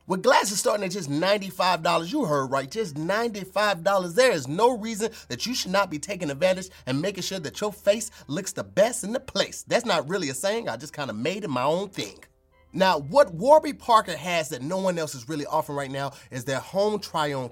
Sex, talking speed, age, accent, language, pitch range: male, 225 wpm, 30-49, American, English, 170-245 Hz